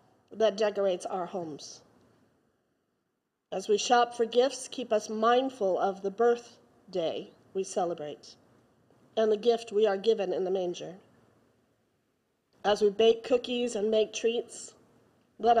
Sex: female